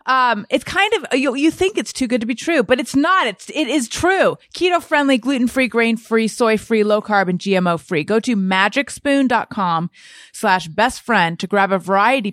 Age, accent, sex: 30-49, American, female